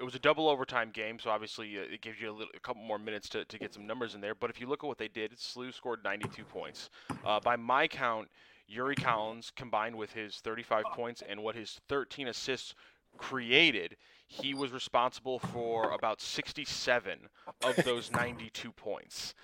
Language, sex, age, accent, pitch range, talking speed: English, male, 20-39, American, 110-130 Hz, 195 wpm